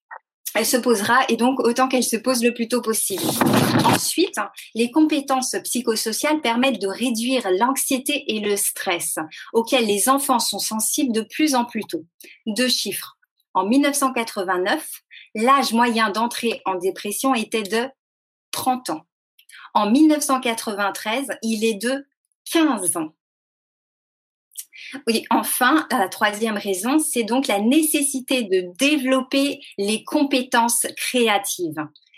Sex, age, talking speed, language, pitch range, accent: female, 30-49, 125 wpm, French, 205-265 Hz, French